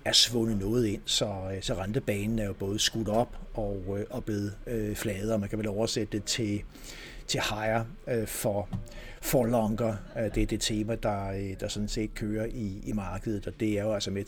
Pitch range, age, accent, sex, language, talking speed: 100-115 Hz, 60-79, native, male, Danish, 190 wpm